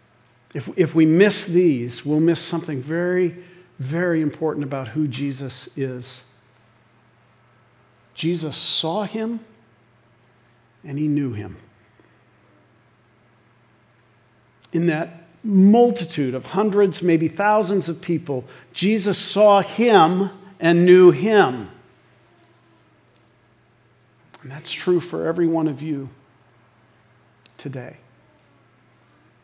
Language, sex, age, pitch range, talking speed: English, male, 50-69, 120-175 Hz, 95 wpm